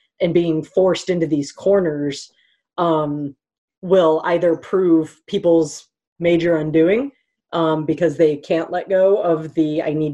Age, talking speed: 30-49, 135 wpm